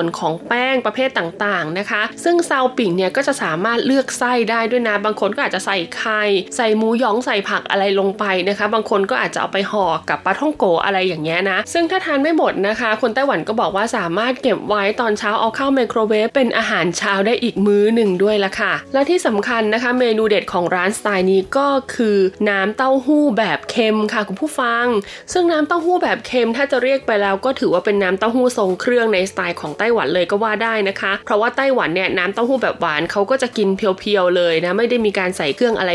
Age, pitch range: 20-39, 195-255 Hz